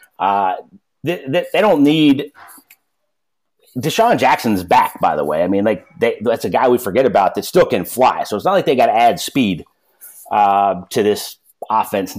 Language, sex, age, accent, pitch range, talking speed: English, male, 30-49, American, 105-145 Hz, 185 wpm